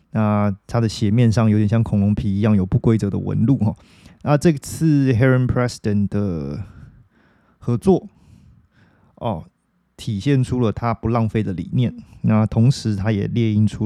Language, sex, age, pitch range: Chinese, male, 20-39, 105-125 Hz